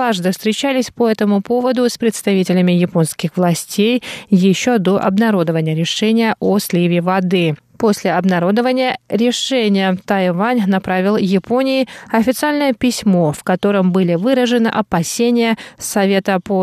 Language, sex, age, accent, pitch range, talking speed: Russian, female, 20-39, native, 185-235 Hz, 110 wpm